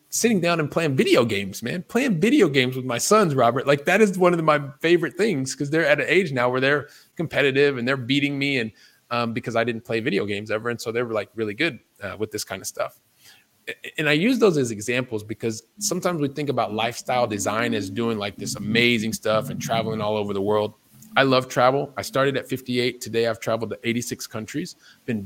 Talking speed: 230 wpm